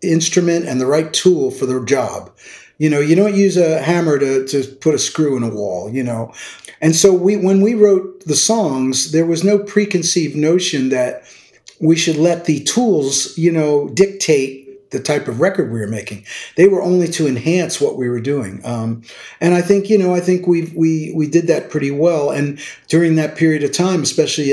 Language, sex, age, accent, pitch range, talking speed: English, male, 50-69, American, 135-170 Hz, 210 wpm